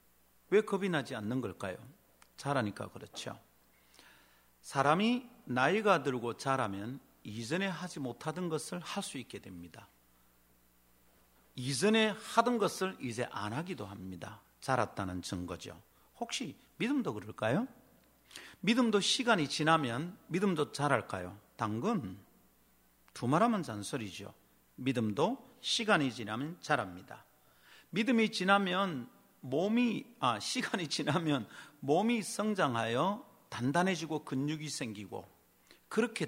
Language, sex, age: Korean, male, 40-59